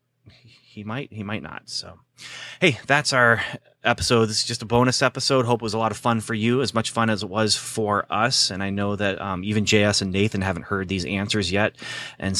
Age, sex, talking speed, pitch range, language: 30-49, male, 230 wpm, 100-120 Hz, English